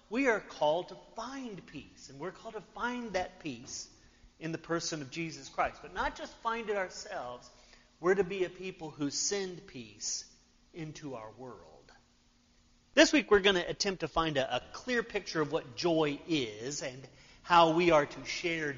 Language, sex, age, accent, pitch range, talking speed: English, male, 40-59, American, 135-185 Hz, 185 wpm